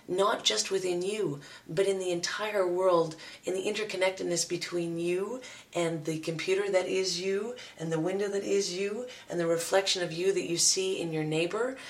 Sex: female